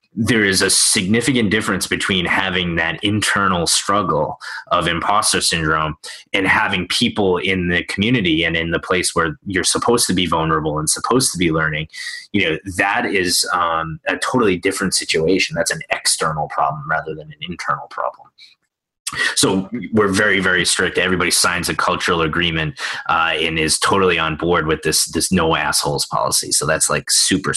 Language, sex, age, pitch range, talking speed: English, male, 20-39, 80-100 Hz, 170 wpm